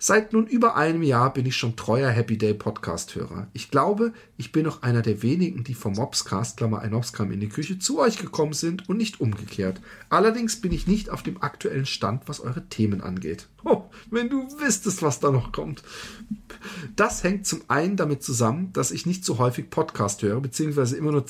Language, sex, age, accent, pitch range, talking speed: German, male, 40-59, German, 130-185 Hz, 195 wpm